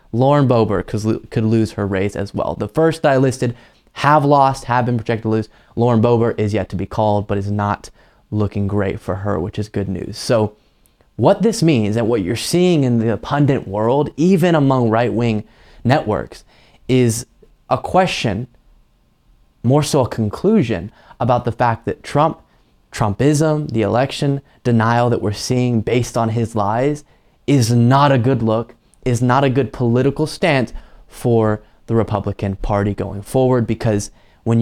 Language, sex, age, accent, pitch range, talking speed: English, male, 20-39, American, 110-140 Hz, 165 wpm